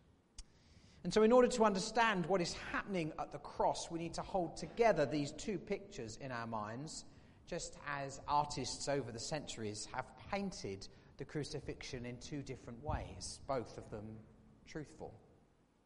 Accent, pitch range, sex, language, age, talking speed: British, 115-160 Hz, male, English, 40-59, 155 wpm